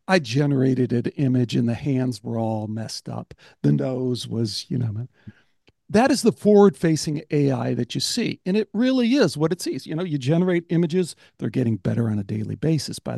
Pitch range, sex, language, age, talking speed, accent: 130-185 Hz, male, English, 60-79, 200 wpm, American